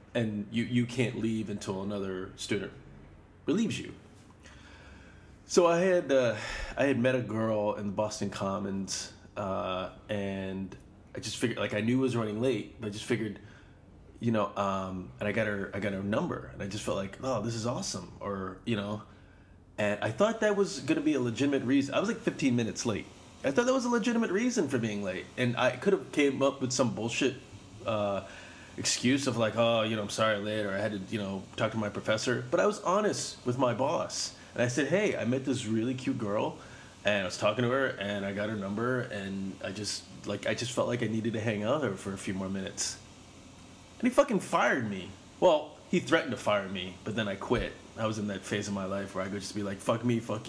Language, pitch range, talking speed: English, 100-125 Hz, 235 wpm